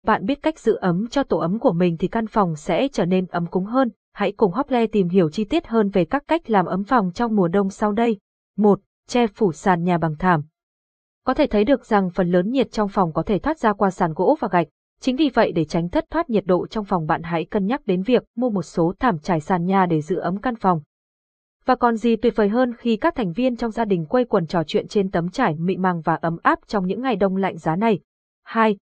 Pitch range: 185-235 Hz